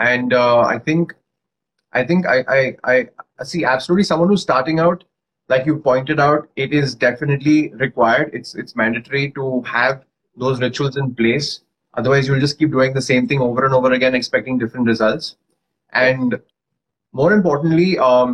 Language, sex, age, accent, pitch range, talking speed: English, male, 20-39, Indian, 125-150 Hz, 165 wpm